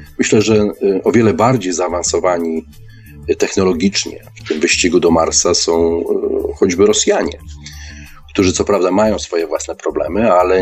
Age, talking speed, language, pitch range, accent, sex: 40-59, 125 wpm, Polish, 80-115 Hz, native, male